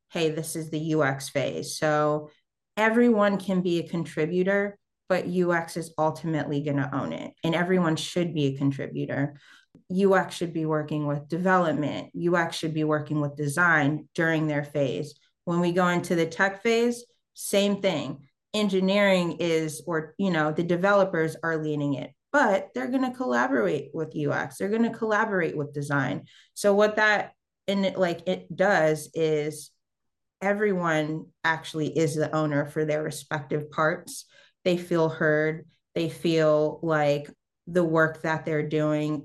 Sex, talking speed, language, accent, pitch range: female, 155 wpm, English, American, 150-185 Hz